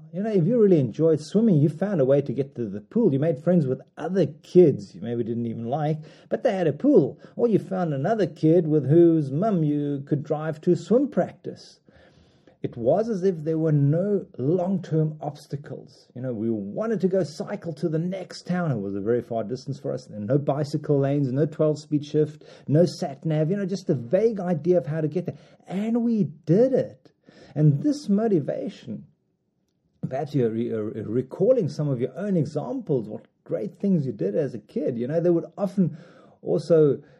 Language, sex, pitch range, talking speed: English, male, 135-180 Hz, 200 wpm